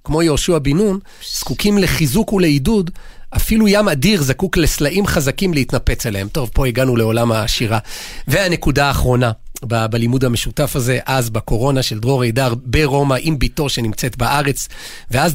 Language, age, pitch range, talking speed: Hebrew, 40-59, 130-165 Hz, 145 wpm